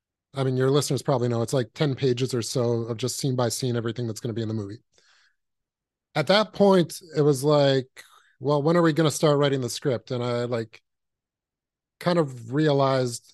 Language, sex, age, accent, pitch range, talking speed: English, male, 30-49, American, 125-150 Hz, 210 wpm